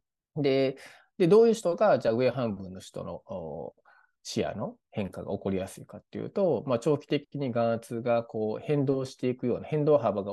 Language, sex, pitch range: Japanese, male, 110-165 Hz